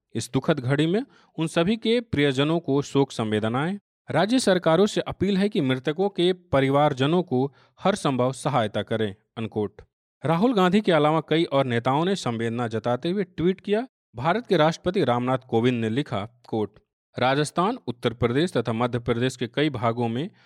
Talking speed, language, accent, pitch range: 170 wpm, Hindi, native, 115-160 Hz